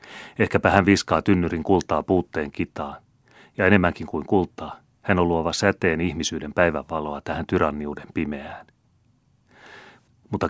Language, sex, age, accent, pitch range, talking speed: Finnish, male, 30-49, native, 75-90 Hz, 120 wpm